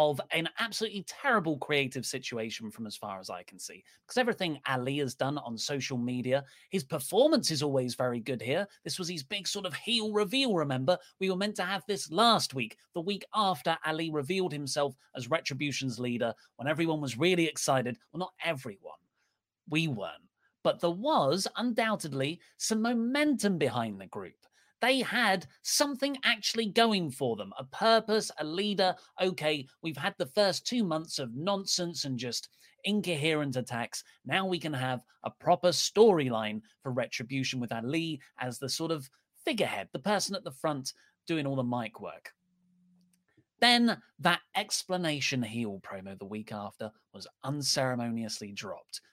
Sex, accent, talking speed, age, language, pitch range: male, British, 165 wpm, 30-49, English, 130-195 Hz